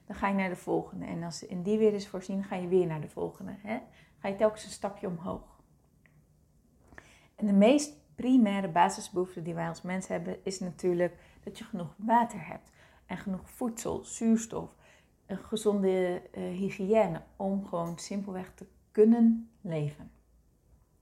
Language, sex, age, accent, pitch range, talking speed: Dutch, female, 30-49, Dutch, 180-215 Hz, 165 wpm